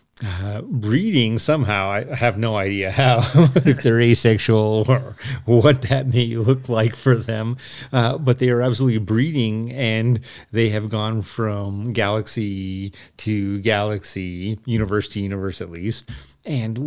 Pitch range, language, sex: 105-130 Hz, English, male